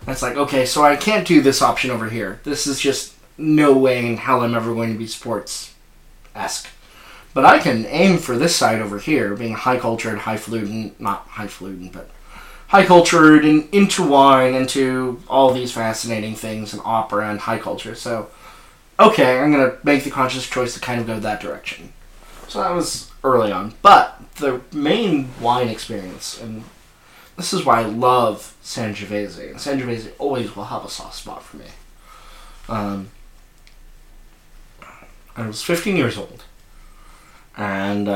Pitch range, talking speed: 100-130 Hz, 165 wpm